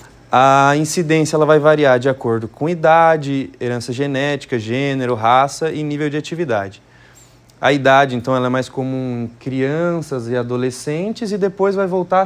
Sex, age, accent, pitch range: male, 20-39, Brazilian, 125-165 Hz